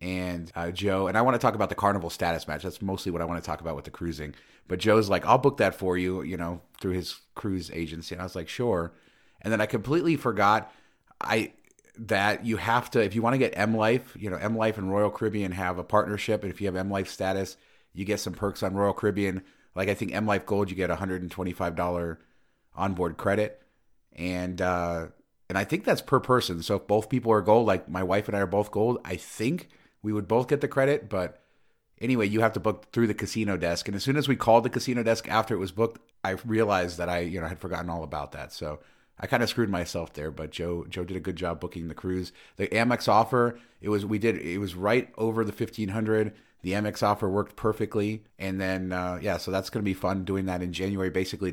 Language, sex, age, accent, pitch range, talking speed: English, male, 30-49, American, 90-110 Hz, 245 wpm